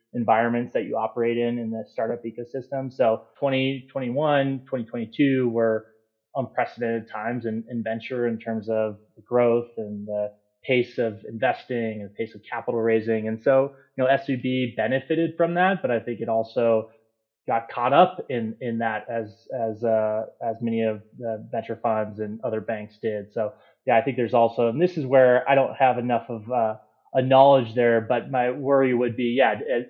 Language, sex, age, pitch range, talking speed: English, male, 20-39, 110-130 Hz, 185 wpm